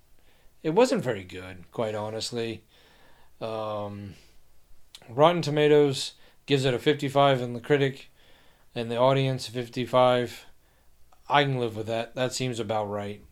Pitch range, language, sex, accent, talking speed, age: 115-135 Hz, English, male, American, 130 wpm, 40-59